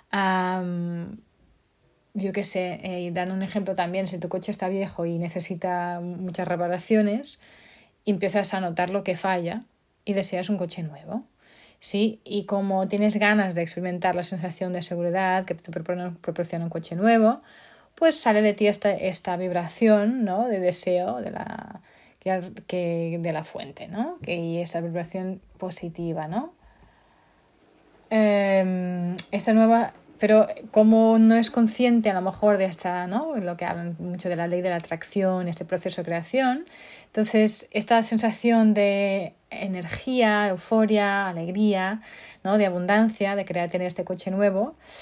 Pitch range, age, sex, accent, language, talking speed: 180-210 Hz, 20-39, female, Spanish, Spanish, 150 wpm